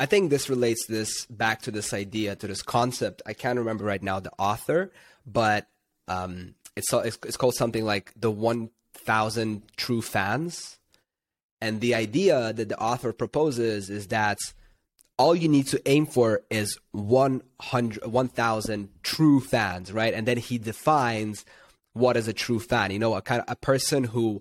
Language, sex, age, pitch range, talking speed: English, male, 20-39, 105-125 Hz, 175 wpm